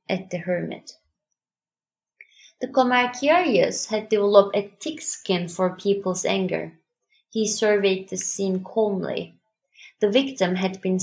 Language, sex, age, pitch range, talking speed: English, female, 20-39, 175-215 Hz, 120 wpm